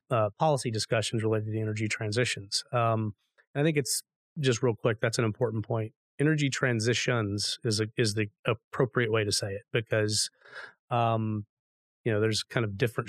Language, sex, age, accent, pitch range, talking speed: English, male, 30-49, American, 110-130 Hz, 175 wpm